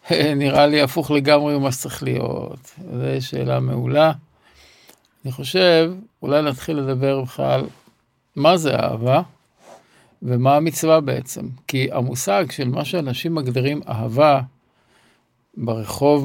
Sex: male